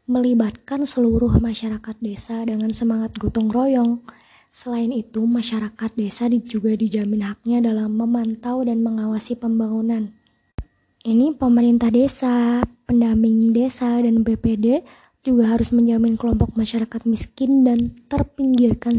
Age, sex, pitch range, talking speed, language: 20-39, female, 220-240 Hz, 110 wpm, Indonesian